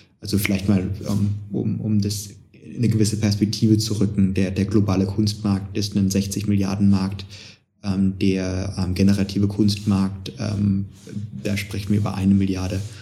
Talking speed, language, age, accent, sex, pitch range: 140 wpm, German, 20-39, German, male, 100-110 Hz